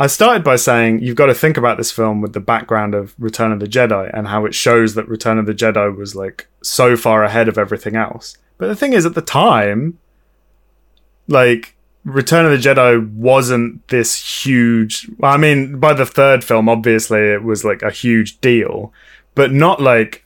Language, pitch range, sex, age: English, 110-130 Hz, male, 20-39